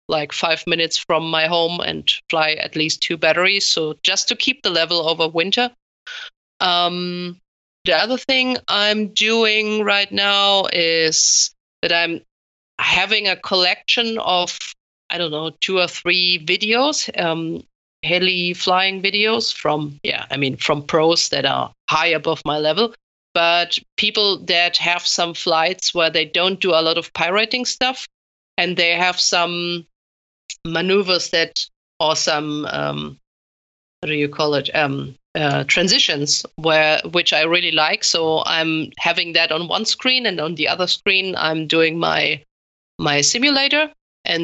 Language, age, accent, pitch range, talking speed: English, 30-49, German, 155-190 Hz, 150 wpm